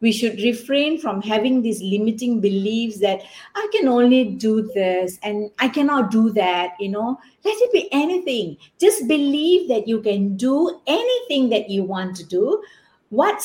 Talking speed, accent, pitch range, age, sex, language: 170 wpm, Malaysian, 210-280 Hz, 50-69, female, English